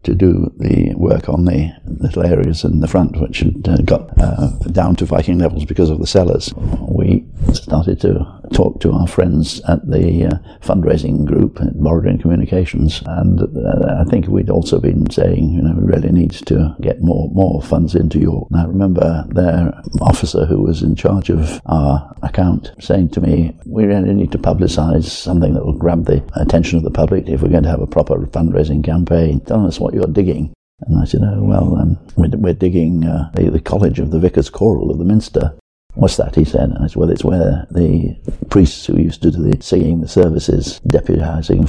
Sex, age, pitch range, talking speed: male, 60-79, 80-90 Hz, 205 wpm